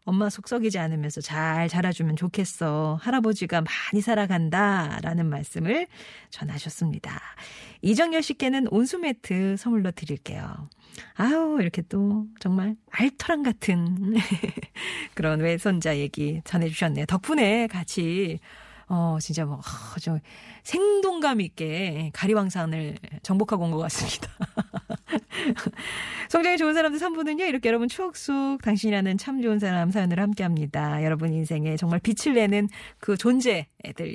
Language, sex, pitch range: Korean, female, 160-225 Hz